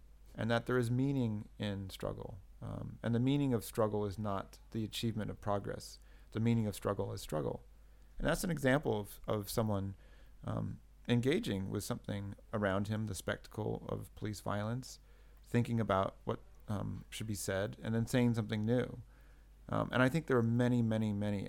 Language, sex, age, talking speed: Romanian, male, 40-59, 180 wpm